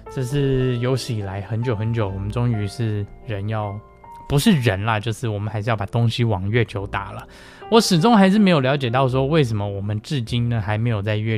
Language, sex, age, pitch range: Chinese, male, 20-39, 110-145 Hz